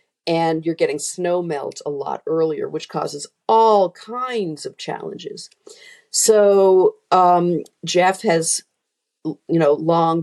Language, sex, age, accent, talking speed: English, female, 50-69, American, 125 wpm